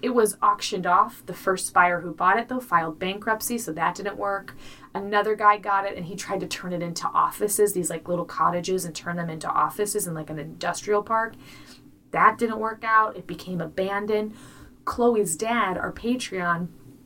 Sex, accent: female, American